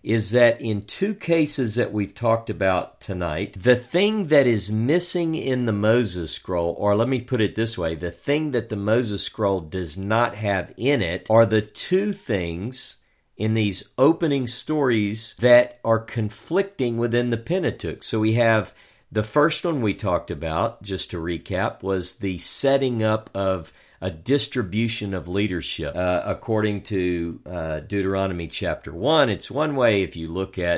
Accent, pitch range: American, 95-125 Hz